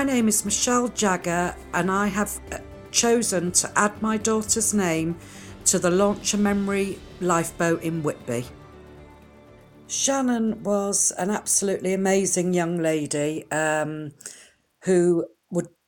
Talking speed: 115 wpm